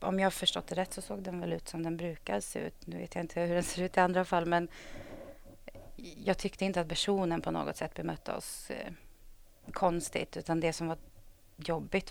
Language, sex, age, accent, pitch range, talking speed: Swedish, female, 30-49, native, 160-185 Hz, 225 wpm